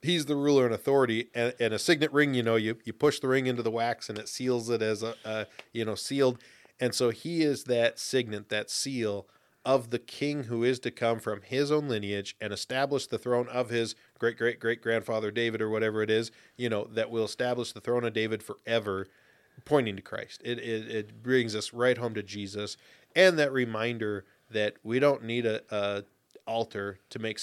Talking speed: 215 wpm